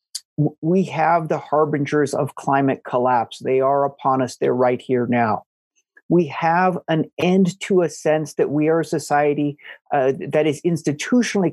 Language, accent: English, American